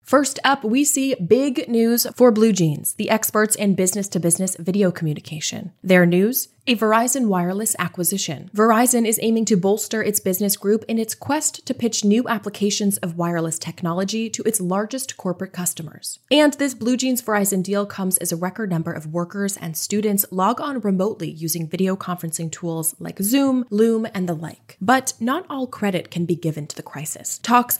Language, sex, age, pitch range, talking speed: English, female, 20-39, 175-220 Hz, 175 wpm